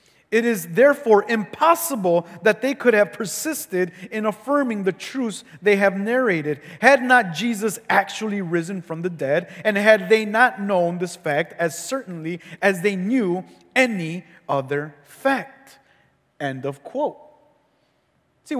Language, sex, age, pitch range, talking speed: English, male, 30-49, 165-230 Hz, 140 wpm